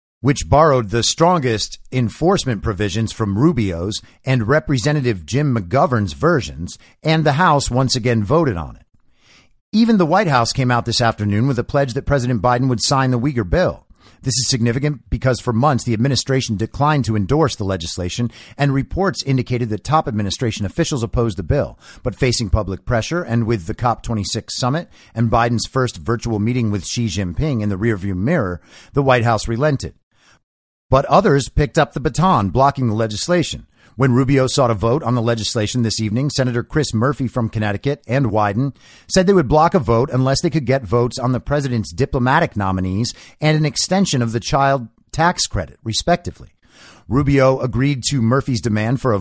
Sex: male